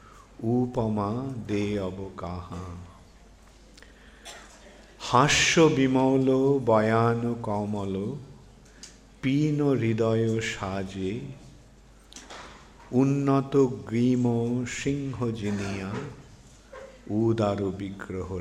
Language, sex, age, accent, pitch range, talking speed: English, male, 50-69, Indian, 110-135 Hz, 55 wpm